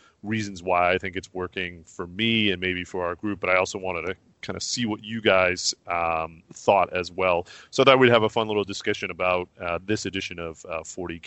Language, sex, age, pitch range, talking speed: English, male, 30-49, 90-115 Hz, 230 wpm